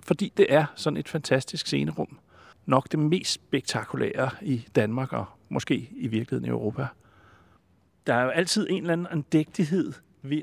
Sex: male